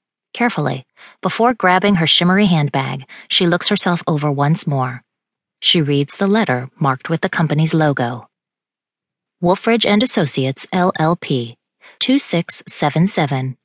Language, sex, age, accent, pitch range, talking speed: English, female, 30-49, American, 145-205 Hz, 110 wpm